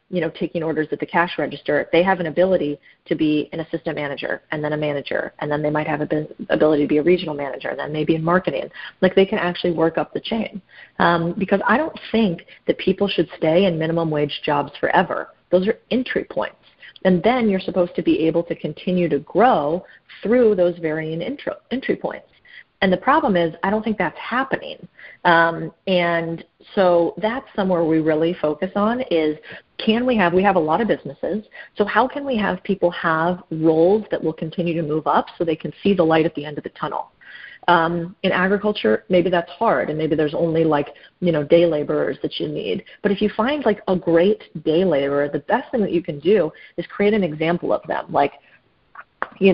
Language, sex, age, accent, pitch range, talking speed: English, female, 30-49, American, 160-195 Hz, 215 wpm